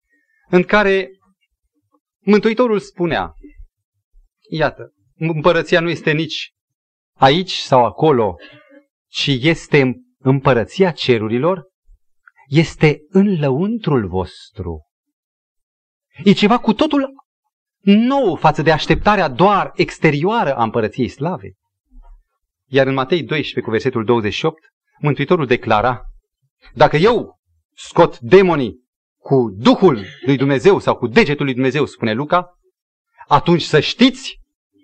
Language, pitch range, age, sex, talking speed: Romanian, 125-210 Hz, 30-49, male, 105 wpm